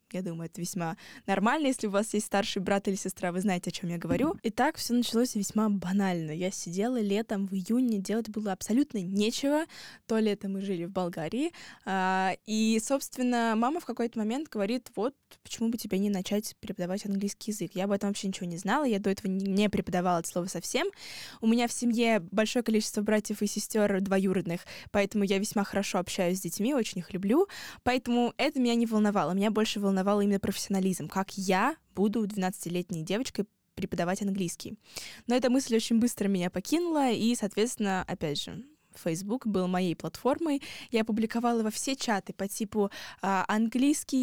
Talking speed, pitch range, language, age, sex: 180 wpm, 190-235 Hz, Russian, 10-29, female